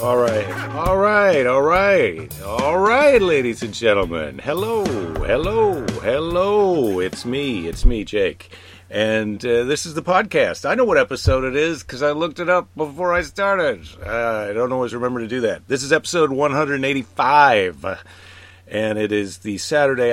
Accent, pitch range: American, 95-150 Hz